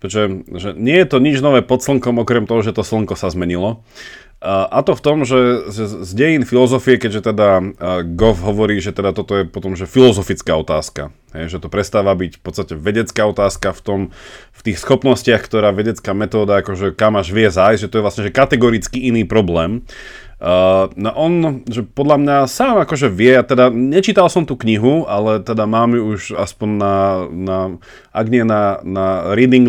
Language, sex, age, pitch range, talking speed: Slovak, male, 30-49, 100-130 Hz, 190 wpm